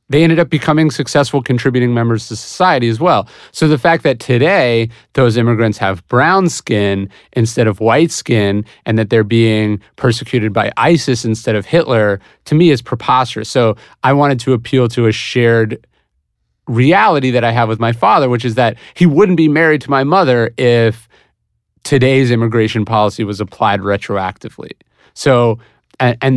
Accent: American